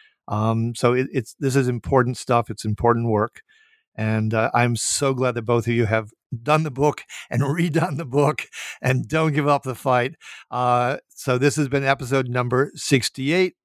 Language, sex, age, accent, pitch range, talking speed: English, male, 50-69, American, 125-145 Hz, 185 wpm